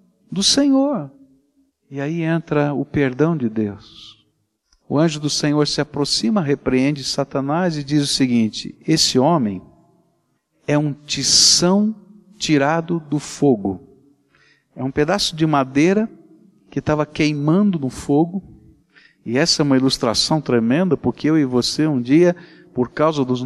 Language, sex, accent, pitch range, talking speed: Portuguese, male, Brazilian, 135-205 Hz, 140 wpm